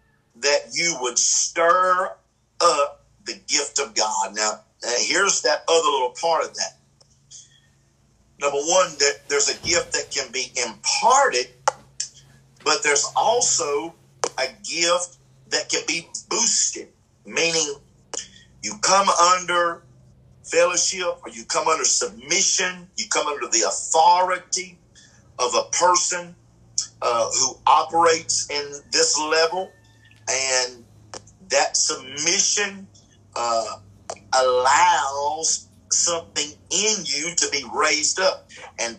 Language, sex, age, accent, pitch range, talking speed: English, male, 50-69, American, 125-185 Hz, 110 wpm